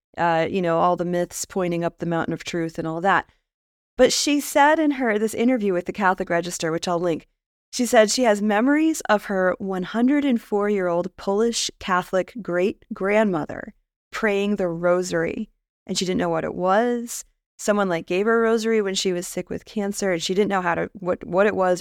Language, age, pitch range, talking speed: English, 20-39, 180-215 Hz, 200 wpm